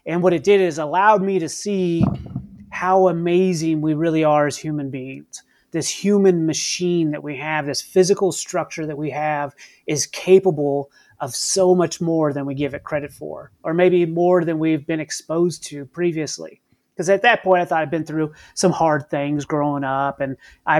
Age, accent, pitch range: 30-49, American, 150-185 Hz